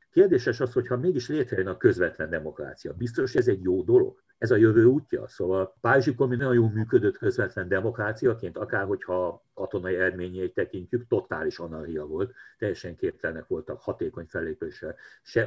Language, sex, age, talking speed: Hungarian, male, 60-79, 145 wpm